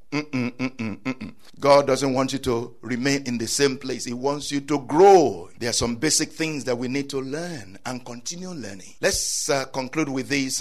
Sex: male